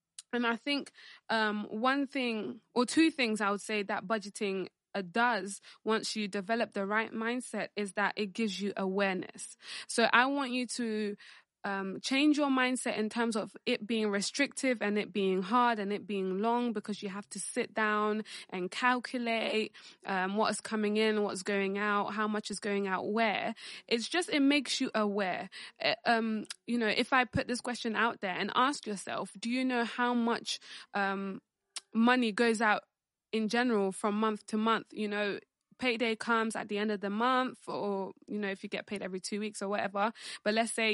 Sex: female